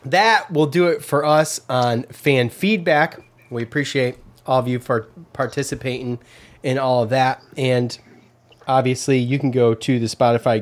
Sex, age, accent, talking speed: male, 20-39, American, 160 wpm